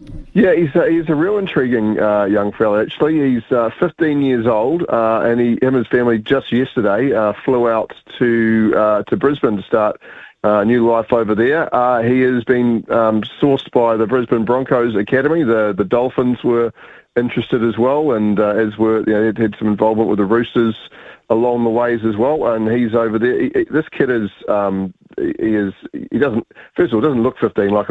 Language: English